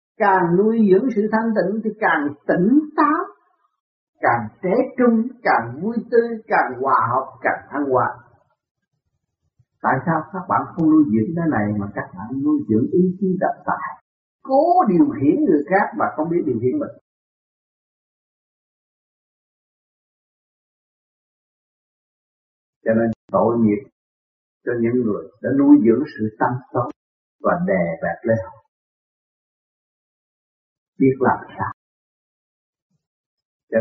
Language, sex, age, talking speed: Vietnamese, male, 50-69, 130 wpm